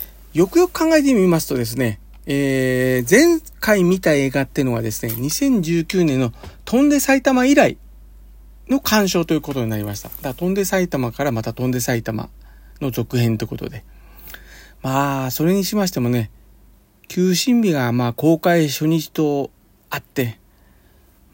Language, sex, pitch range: Japanese, male, 115-180 Hz